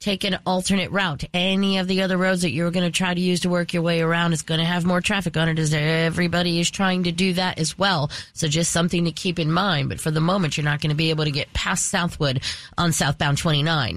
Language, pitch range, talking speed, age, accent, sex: English, 155-200 Hz, 265 wpm, 30-49, American, female